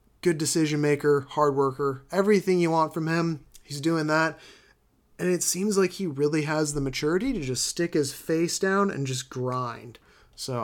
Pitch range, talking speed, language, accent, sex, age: 140-185 Hz, 180 wpm, English, American, male, 30-49